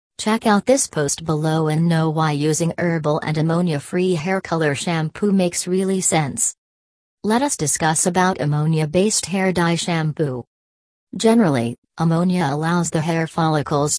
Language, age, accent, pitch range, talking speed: English, 40-59, American, 145-175 Hz, 135 wpm